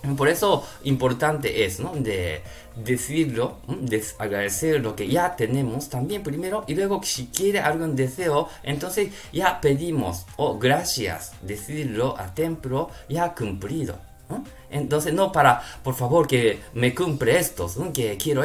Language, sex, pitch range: Japanese, male, 115-160 Hz